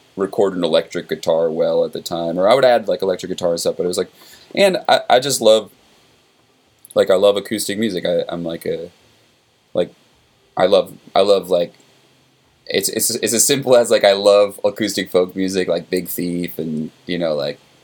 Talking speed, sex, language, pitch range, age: 200 wpm, male, English, 85-110 Hz, 20-39